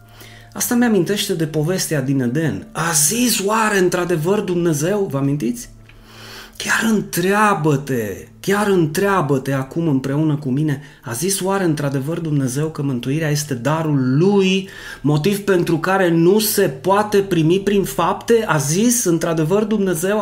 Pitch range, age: 130-195 Hz, 30-49